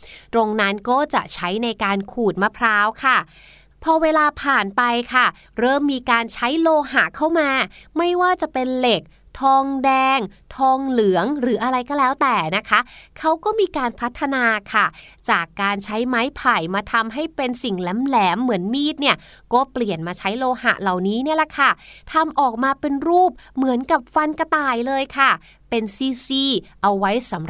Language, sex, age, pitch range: Thai, female, 20-39, 210-290 Hz